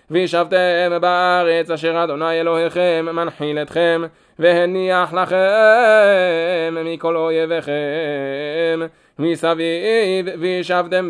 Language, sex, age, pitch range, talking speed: Hebrew, male, 20-39, 165-180 Hz, 70 wpm